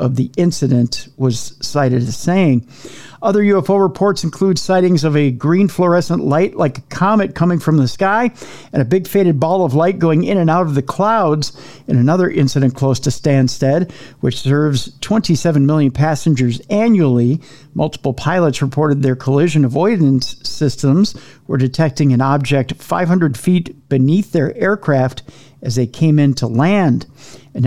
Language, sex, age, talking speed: English, male, 50-69, 160 wpm